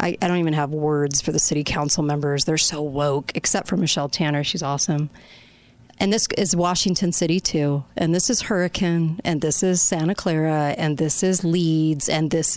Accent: American